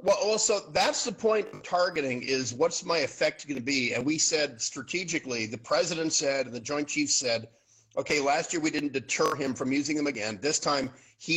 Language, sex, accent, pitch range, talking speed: English, male, American, 125-160 Hz, 210 wpm